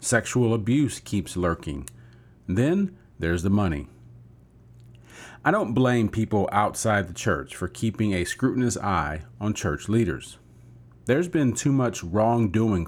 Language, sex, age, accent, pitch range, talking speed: English, male, 40-59, American, 90-120 Hz, 130 wpm